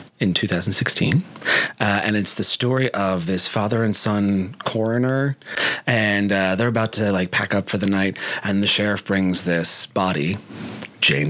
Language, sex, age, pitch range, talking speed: English, male, 30-49, 95-115 Hz, 165 wpm